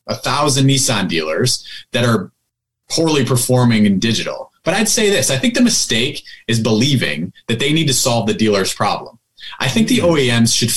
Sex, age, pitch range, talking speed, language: male, 30-49, 115-145 Hz, 185 wpm, English